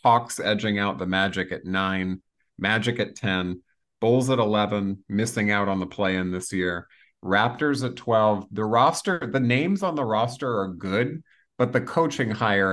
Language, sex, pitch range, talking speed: English, male, 90-110 Hz, 170 wpm